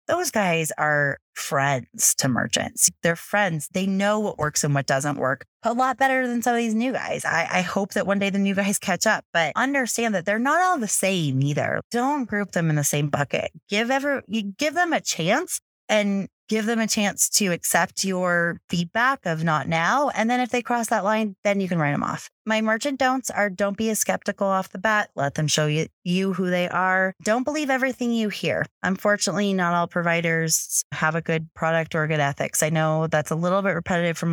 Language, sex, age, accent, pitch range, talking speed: English, female, 30-49, American, 155-205 Hz, 220 wpm